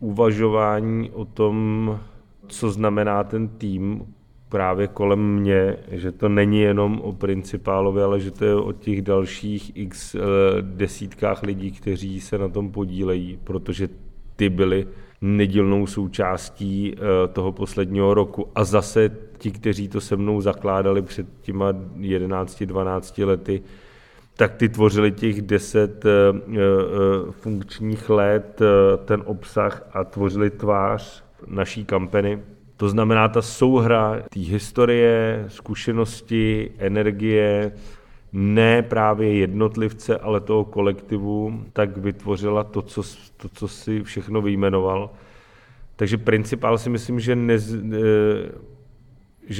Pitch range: 100-110 Hz